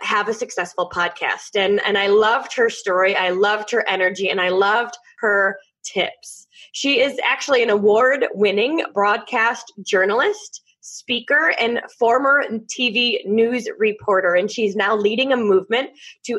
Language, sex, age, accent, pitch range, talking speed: English, female, 20-39, American, 205-275 Hz, 145 wpm